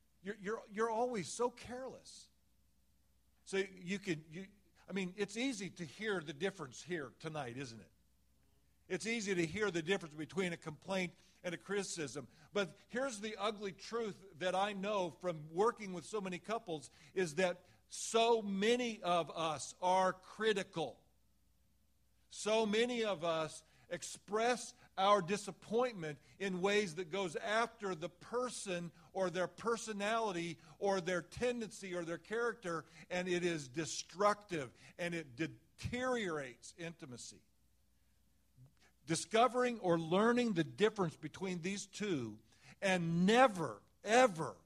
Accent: American